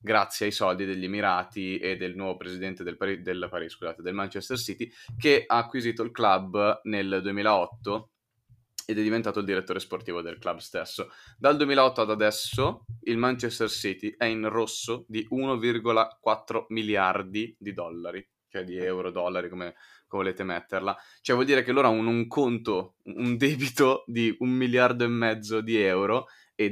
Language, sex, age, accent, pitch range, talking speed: Italian, male, 20-39, native, 100-120 Hz, 165 wpm